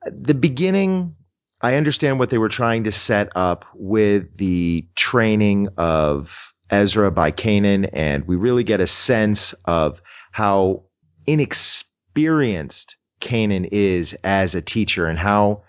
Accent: American